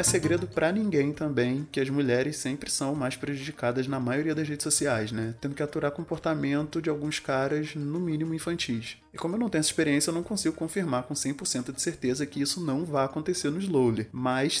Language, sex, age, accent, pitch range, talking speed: Portuguese, male, 20-39, Brazilian, 120-155 Hz, 210 wpm